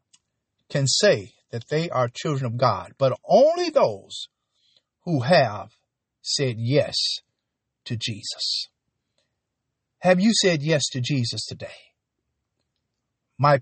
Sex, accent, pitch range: male, American, 120-160 Hz